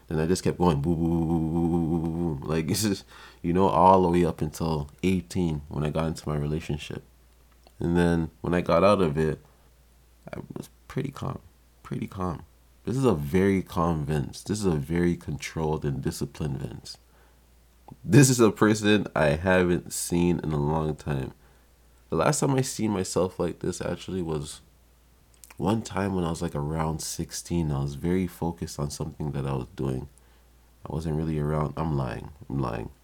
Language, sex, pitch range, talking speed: English, male, 70-90 Hz, 185 wpm